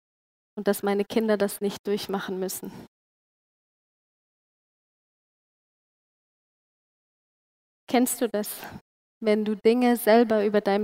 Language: German